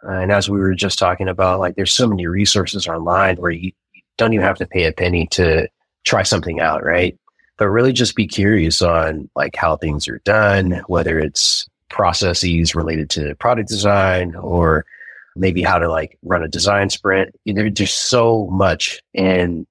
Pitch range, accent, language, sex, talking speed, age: 90-110 Hz, American, English, male, 180 wpm, 30-49